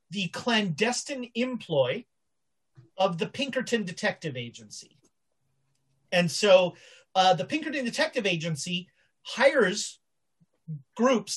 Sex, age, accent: male, 30-49, American